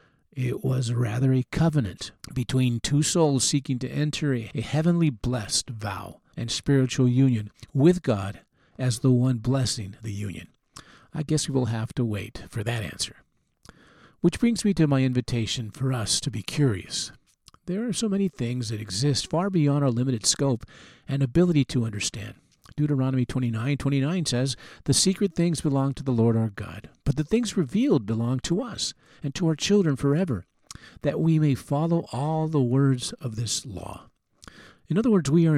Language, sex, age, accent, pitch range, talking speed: English, male, 50-69, American, 125-160 Hz, 175 wpm